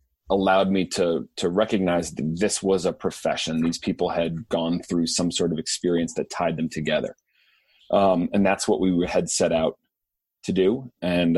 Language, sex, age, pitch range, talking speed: English, male, 30-49, 85-95 Hz, 180 wpm